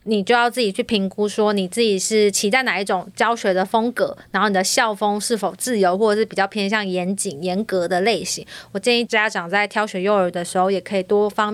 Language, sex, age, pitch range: Chinese, female, 20-39, 195-230 Hz